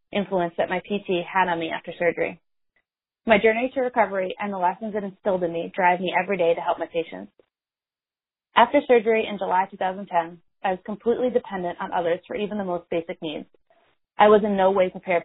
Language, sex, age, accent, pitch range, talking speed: English, female, 20-39, American, 180-225 Hz, 200 wpm